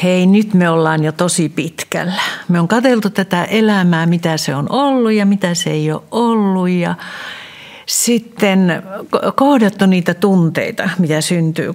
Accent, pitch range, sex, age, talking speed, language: native, 170-215 Hz, female, 60-79, 150 wpm, Finnish